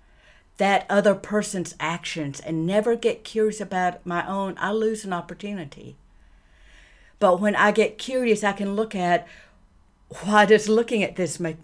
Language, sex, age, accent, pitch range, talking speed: English, female, 50-69, American, 165-215 Hz, 155 wpm